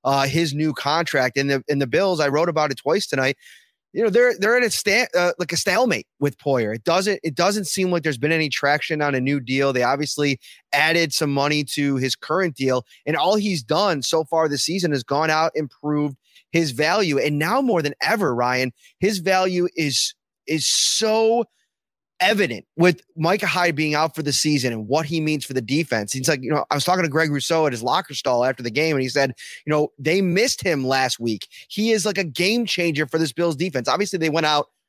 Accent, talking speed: American, 230 wpm